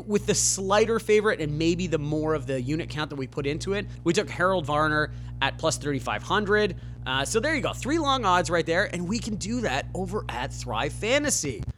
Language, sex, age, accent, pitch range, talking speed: English, male, 30-49, American, 125-190 Hz, 220 wpm